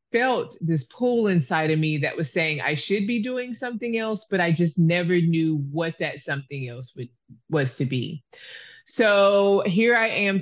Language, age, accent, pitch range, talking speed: English, 30-49, American, 155-195 Hz, 180 wpm